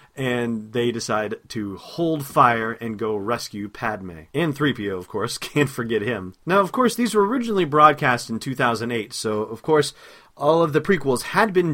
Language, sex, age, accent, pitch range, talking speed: English, male, 30-49, American, 115-145 Hz, 180 wpm